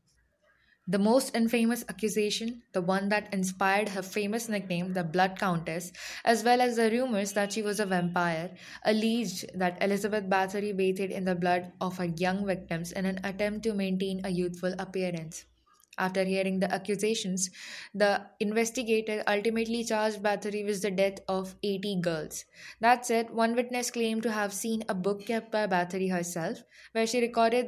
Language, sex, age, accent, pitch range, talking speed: English, female, 10-29, Indian, 185-220 Hz, 165 wpm